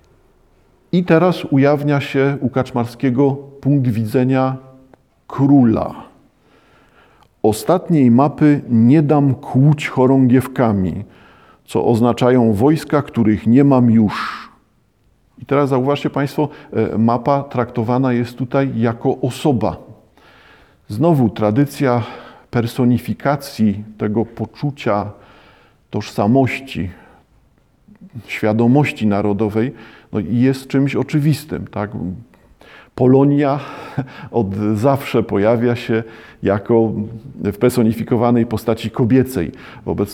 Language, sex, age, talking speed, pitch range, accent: Polish, male, 50-69, 85 wpm, 115-140 Hz, native